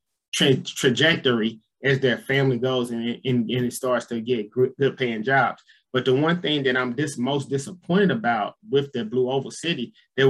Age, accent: 20-39, American